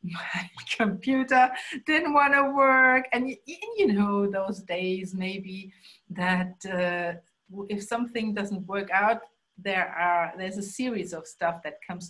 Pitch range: 185-235 Hz